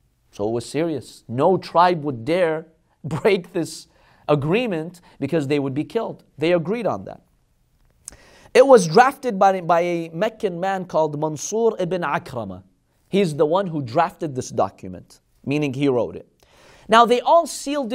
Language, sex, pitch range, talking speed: English, male, 155-225 Hz, 155 wpm